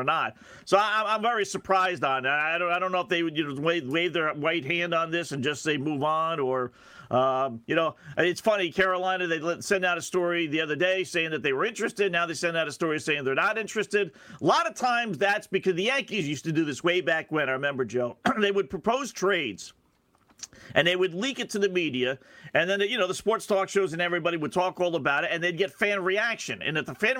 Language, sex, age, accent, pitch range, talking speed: English, male, 40-59, American, 155-200 Hz, 245 wpm